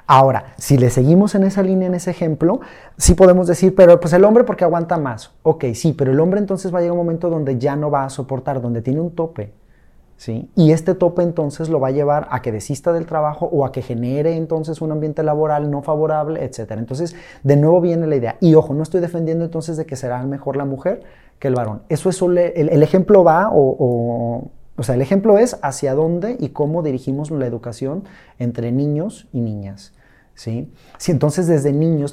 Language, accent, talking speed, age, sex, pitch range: Spanish, Mexican, 220 wpm, 30-49, male, 130-170 Hz